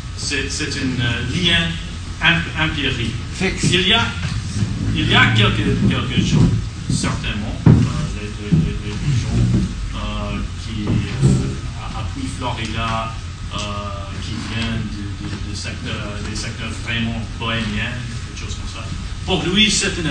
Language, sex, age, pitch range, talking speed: French, male, 40-59, 95-115 Hz, 135 wpm